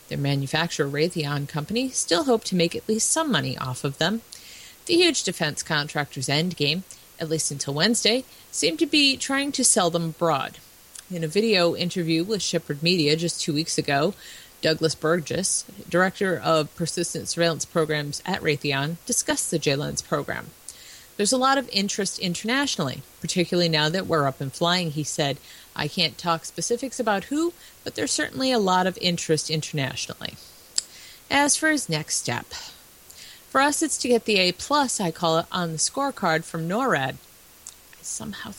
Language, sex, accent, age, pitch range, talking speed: English, female, American, 30-49, 155-215 Hz, 165 wpm